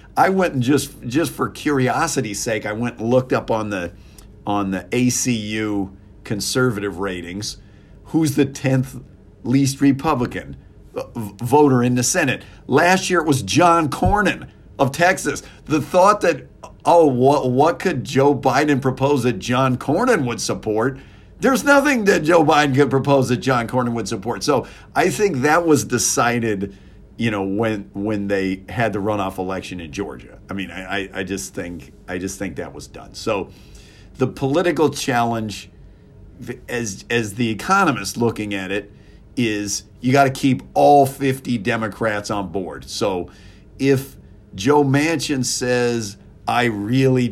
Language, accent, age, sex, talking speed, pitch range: English, American, 50-69, male, 155 wpm, 105-135 Hz